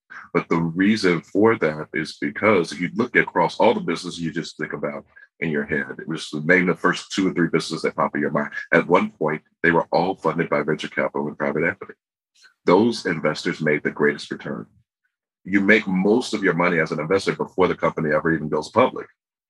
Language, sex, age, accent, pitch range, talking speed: English, male, 40-59, American, 80-100 Hz, 215 wpm